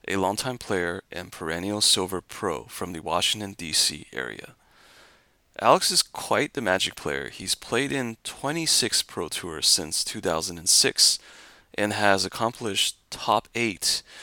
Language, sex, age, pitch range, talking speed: English, male, 30-49, 90-115 Hz, 130 wpm